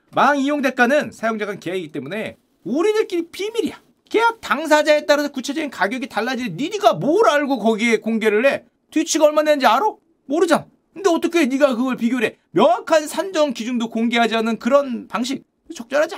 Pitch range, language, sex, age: 210-300 Hz, Korean, male, 40-59